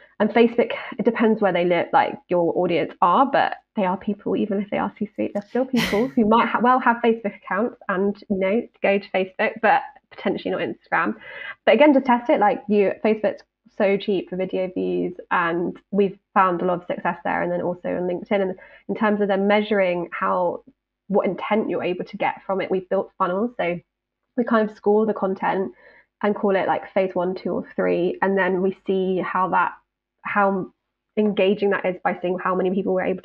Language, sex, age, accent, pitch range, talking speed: English, female, 20-39, British, 185-220 Hz, 215 wpm